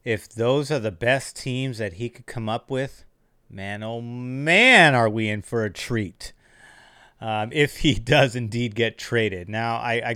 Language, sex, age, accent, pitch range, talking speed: English, male, 30-49, American, 110-125 Hz, 185 wpm